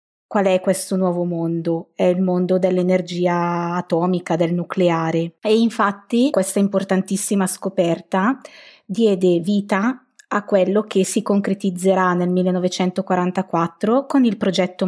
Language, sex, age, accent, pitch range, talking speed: Italian, female, 20-39, native, 175-195 Hz, 115 wpm